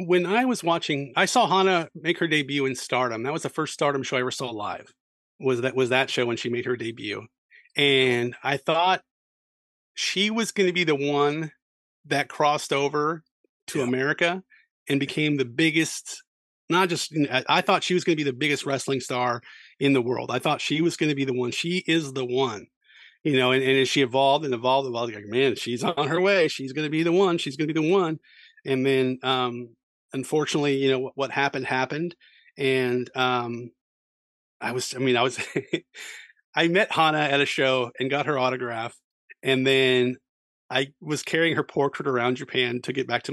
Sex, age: male, 40-59